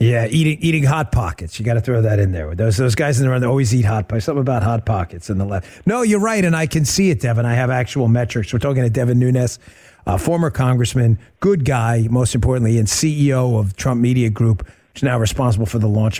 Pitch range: 110-135 Hz